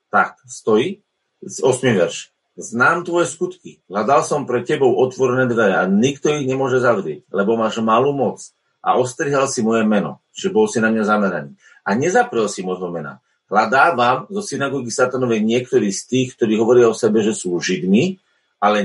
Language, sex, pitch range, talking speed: Slovak, male, 110-140 Hz, 170 wpm